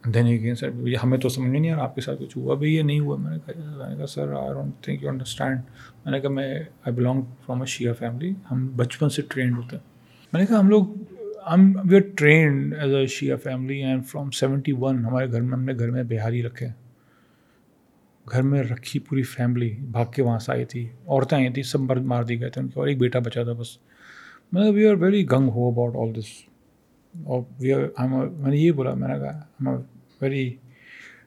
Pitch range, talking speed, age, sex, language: 120-140 Hz, 175 wpm, 40-59, male, Urdu